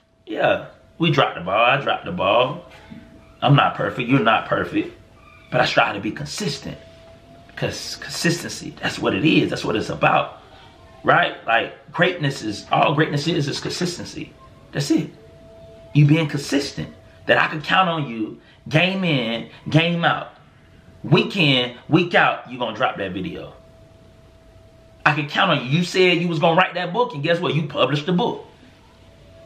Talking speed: 170 wpm